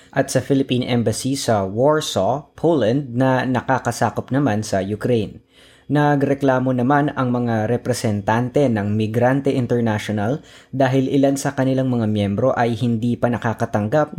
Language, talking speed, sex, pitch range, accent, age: Filipino, 125 wpm, female, 110-135 Hz, native, 20-39